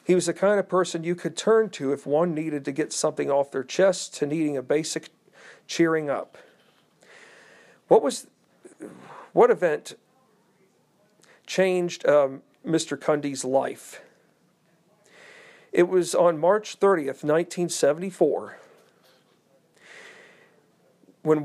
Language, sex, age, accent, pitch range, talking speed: English, male, 50-69, American, 140-175 Hz, 115 wpm